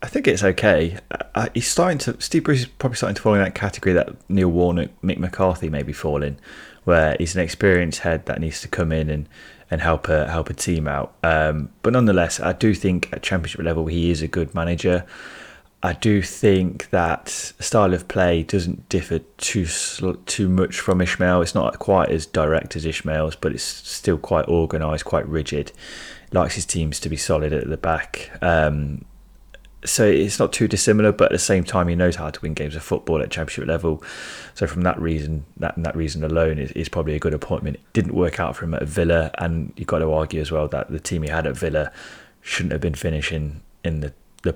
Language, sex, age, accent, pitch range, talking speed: English, male, 20-39, British, 75-90 Hz, 215 wpm